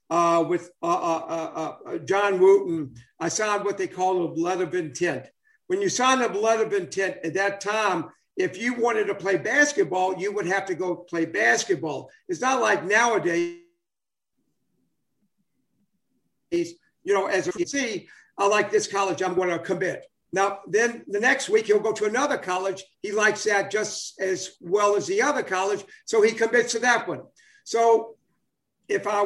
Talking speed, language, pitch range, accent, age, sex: 175 wpm, English, 180-250 Hz, American, 60-79, male